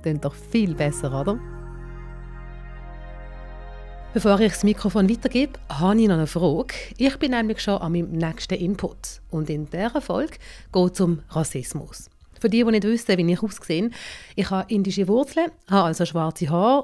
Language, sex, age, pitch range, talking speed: German, female, 30-49, 175-225 Hz, 170 wpm